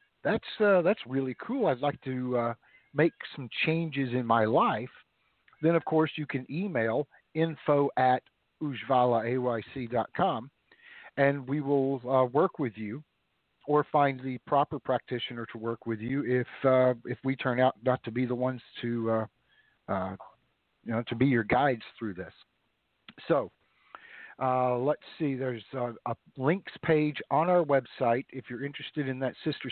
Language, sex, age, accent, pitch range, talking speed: English, male, 50-69, American, 120-150 Hz, 160 wpm